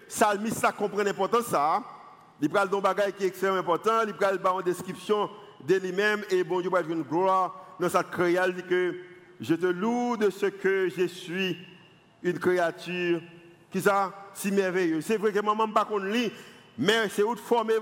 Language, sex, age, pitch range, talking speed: French, male, 50-69, 185-230 Hz, 195 wpm